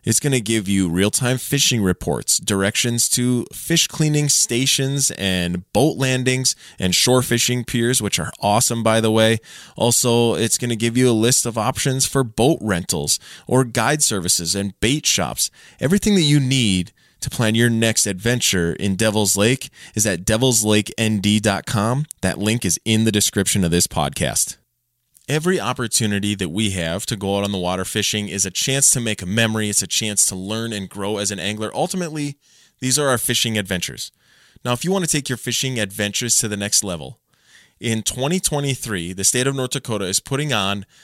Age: 20-39